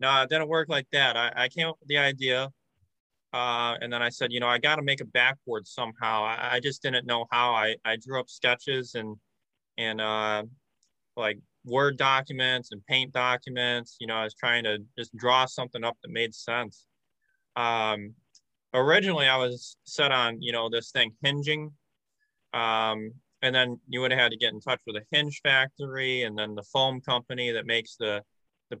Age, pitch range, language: 20-39, 115-130 Hz, English